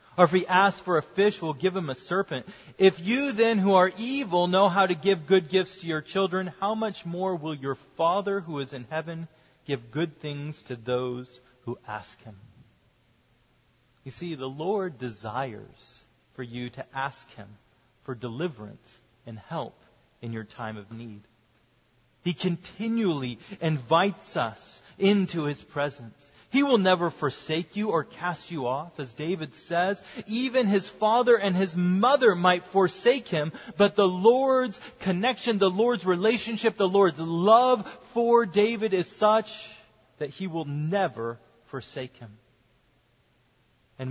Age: 40-59